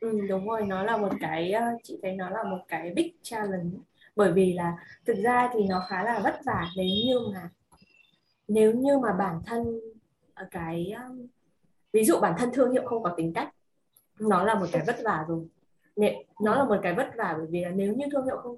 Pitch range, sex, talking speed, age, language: 185-245 Hz, female, 215 wpm, 20-39, Vietnamese